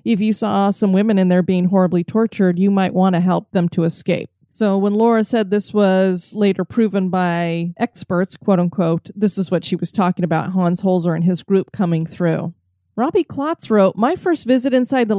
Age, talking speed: 30-49, 205 wpm